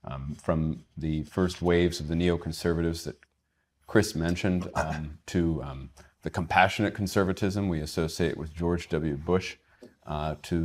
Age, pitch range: 40-59, 80-95 Hz